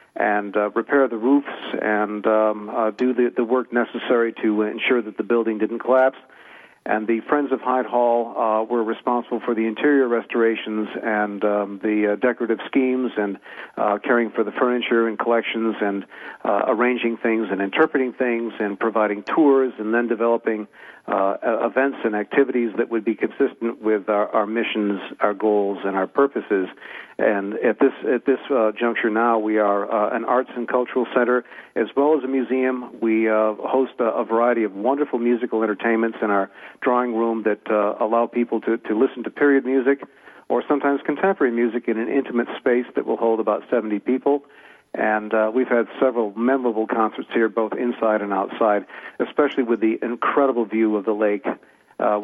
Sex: male